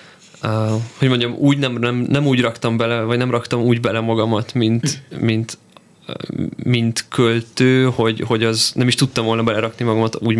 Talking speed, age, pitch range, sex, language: 165 wpm, 20-39, 110-120 Hz, male, Hungarian